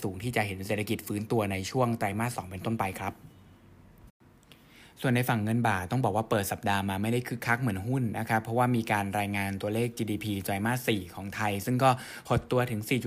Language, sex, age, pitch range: Thai, male, 20-39, 100-125 Hz